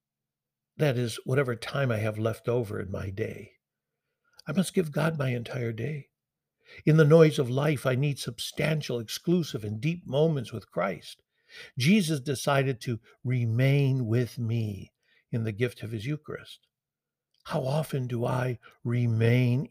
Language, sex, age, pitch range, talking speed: English, male, 60-79, 115-150 Hz, 150 wpm